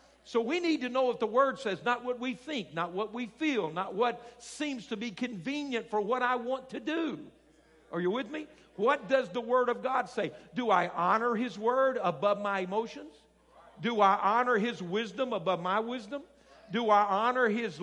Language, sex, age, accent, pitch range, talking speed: English, male, 50-69, American, 205-255 Hz, 200 wpm